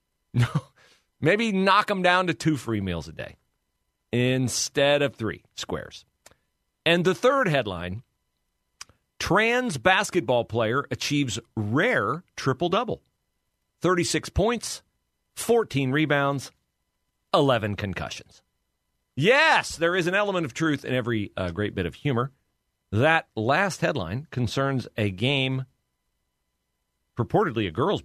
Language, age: English, 40-59